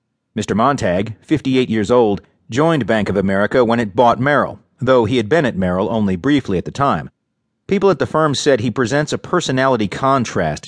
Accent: American